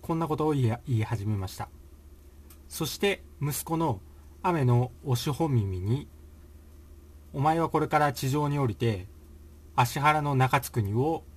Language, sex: Japanese, male